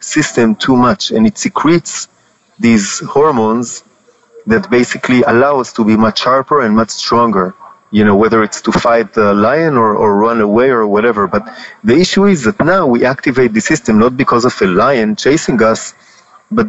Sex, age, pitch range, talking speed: male, 30-49, 115-165 Hz, 185 wpm